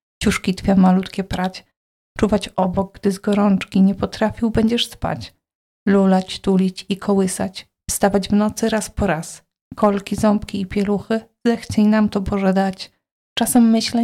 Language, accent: Polish, native